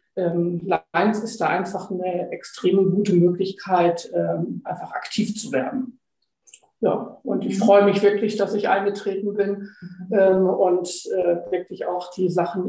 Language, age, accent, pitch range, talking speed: German, 50-69, German, 185-210 Hz, 130 wpm